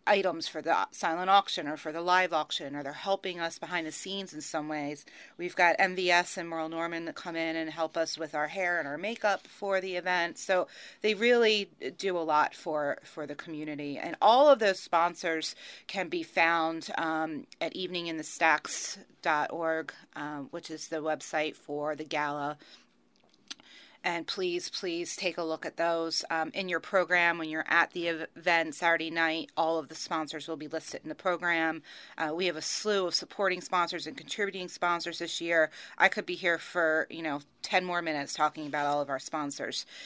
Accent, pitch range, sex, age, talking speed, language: American, 155-190 Hz, female, 30-49, 195 wpm, English